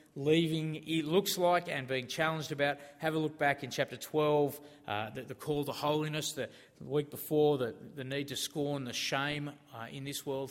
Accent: Australian